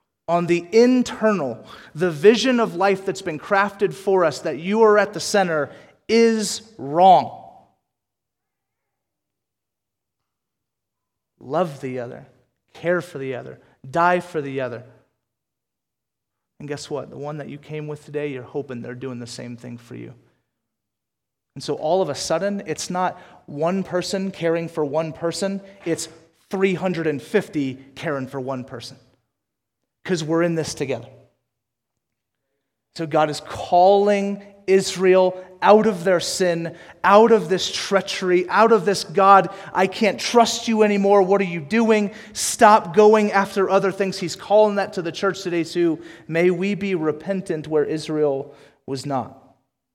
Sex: male